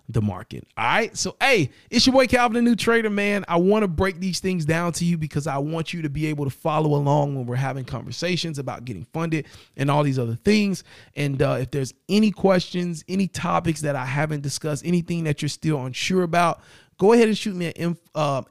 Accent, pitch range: American, 130-170 Hz